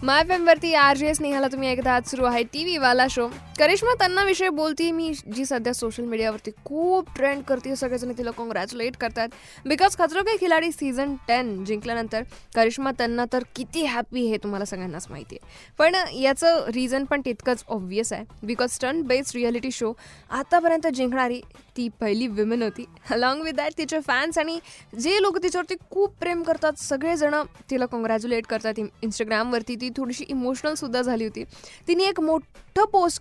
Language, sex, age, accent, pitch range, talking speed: Marathi, female, 10-29, native, 235-310 Hz, 165 wpm